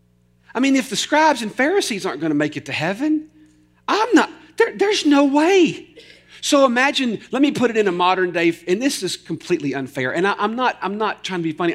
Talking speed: 230 wpm